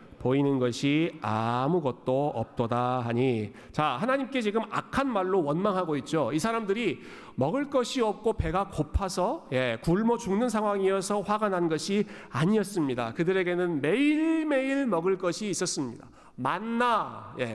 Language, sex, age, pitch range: Korean, male, 40-59, 140-210 Hz